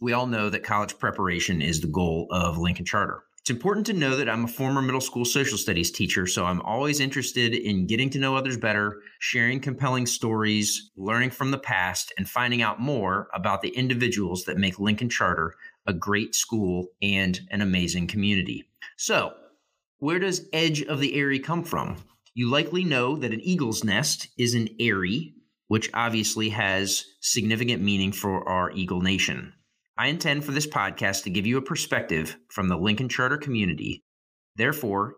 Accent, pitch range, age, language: American, 95-135 Hz, 30-49, English